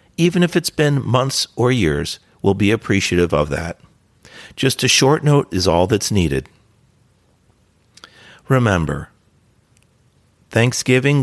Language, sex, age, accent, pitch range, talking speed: English, male, 50-69, American, 90-120 Hz, 120 wpm